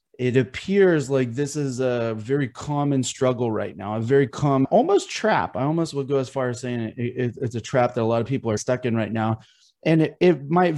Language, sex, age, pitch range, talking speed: English, male, 30-49, 125-145 Hz, 240 wpm